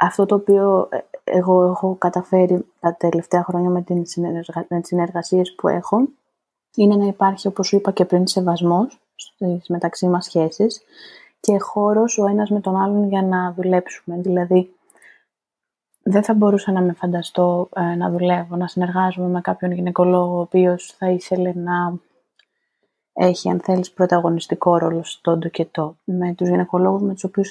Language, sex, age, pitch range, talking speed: Greek, female, 20-39, 175-200 Hz, 155 wpm